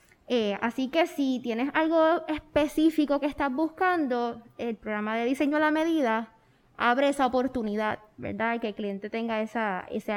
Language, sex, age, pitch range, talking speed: Spanish, female, 20-39, 230-280 Hz, 160 wpm